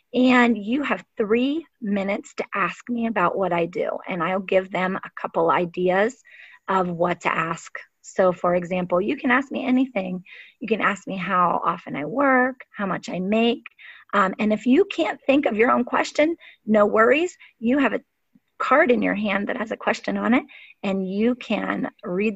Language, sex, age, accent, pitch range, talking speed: English, female, 30-49, American, 205-255 Hz, 195 wpm